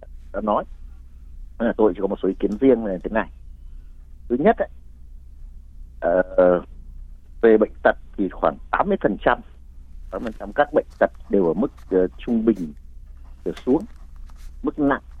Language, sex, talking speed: Vietnamese, male, 140 wpm